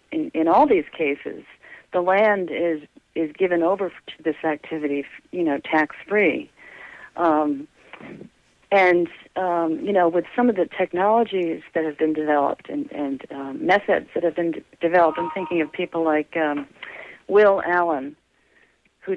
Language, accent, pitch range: English, American, 160-210 Hz